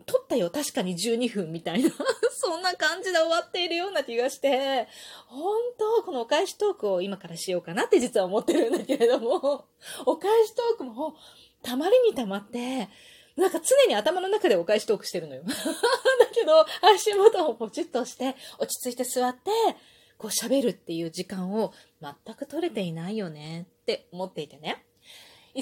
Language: Japanese